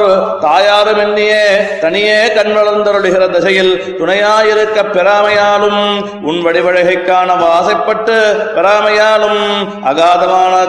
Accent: native